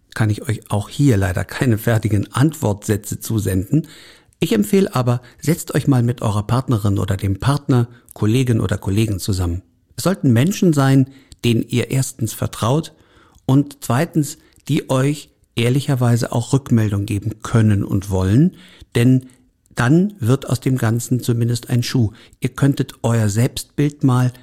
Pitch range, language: 105-130 Hz, German